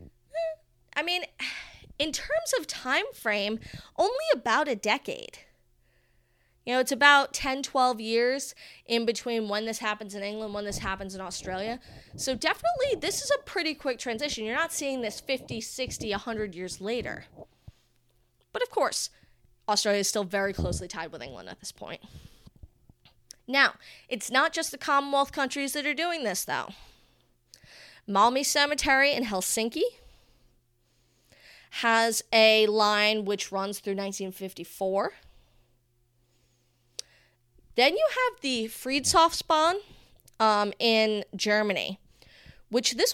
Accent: American